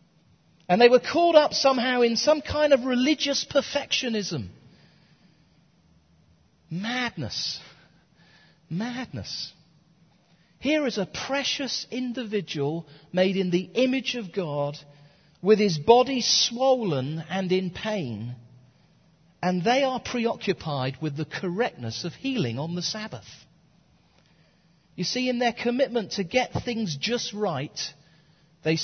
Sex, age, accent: male, 40-59, British